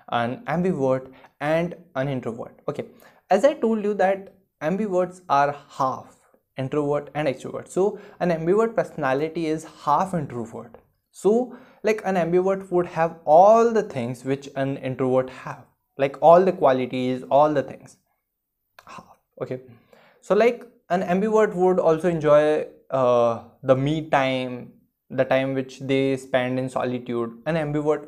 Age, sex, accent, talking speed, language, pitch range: 20-39, male, native, 145 wpm, Hindi, 130-180 Hz